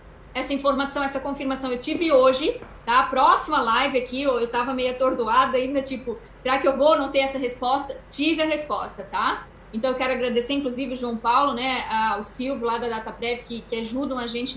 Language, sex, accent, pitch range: Portuguese, female, Brazilian, 240-280 Hz